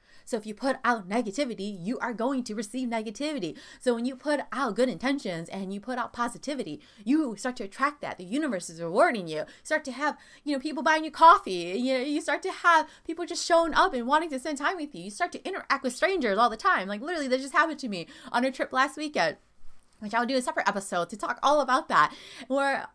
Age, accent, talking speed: 20-39, American, 245 wpm